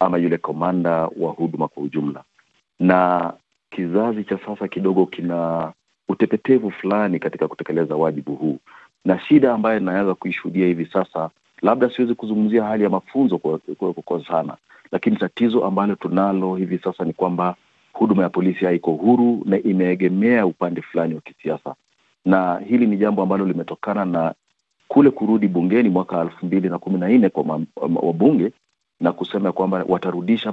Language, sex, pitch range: Swahili, male, 85-105 Hz